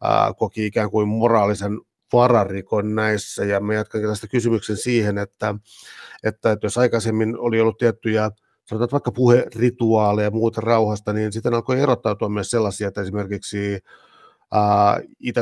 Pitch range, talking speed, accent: 105-115 Hz, 130 wpm, native